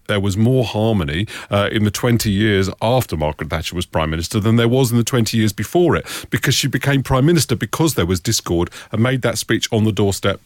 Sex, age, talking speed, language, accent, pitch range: male, 40-59, 230 wpm, English, British, 100-125 Hz